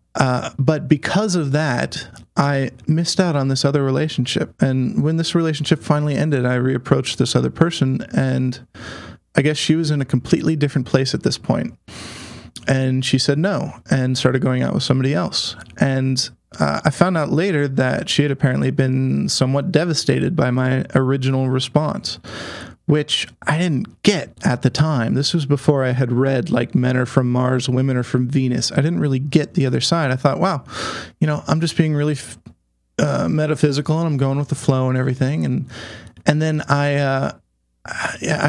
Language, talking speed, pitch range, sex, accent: English, 185 wpm, 130-150 Hz, male, American